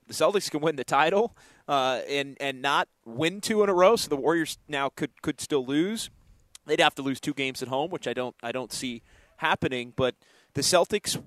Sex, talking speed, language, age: male, 220 wpm, English, 30-49